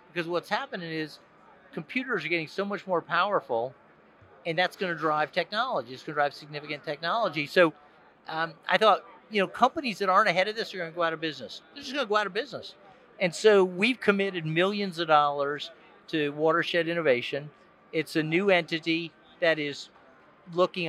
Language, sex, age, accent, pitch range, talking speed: English, male, 50-69, American, 160-185 Hz, 190 wpm